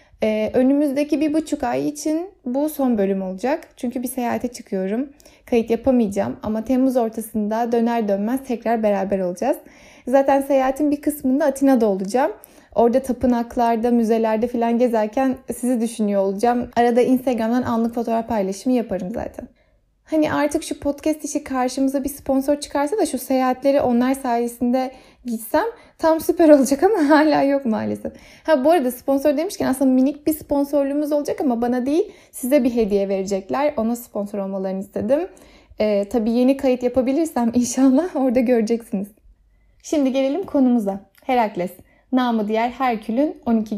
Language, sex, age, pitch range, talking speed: Turkish, female, 10-29, 230-285 Hz, 145 wpm